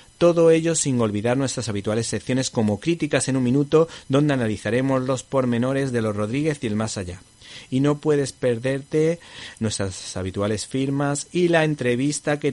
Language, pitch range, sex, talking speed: Spanish, 110-140 Hz, male, 165 wpm